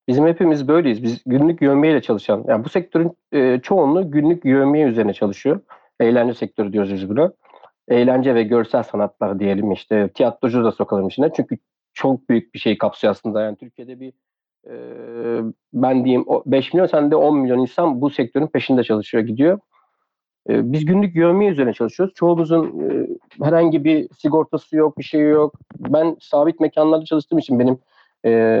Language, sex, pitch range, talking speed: Turkish, male, 120-160 Hz, 160 wpm